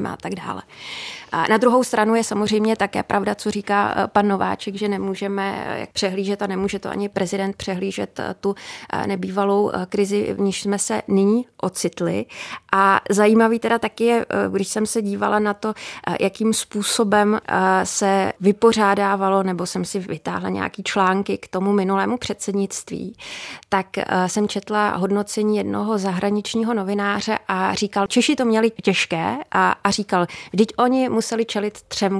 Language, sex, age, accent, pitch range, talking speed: Czech, female, 30-49, native, 195-220 Hz, 145 wpm